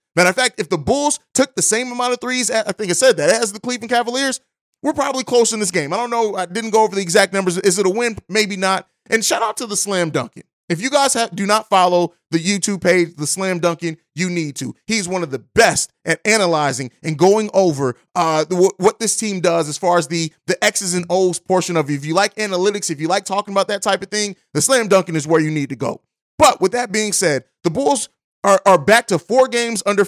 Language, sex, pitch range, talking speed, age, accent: English, male, 175-225 Hz, 255 wpm, 30-49, American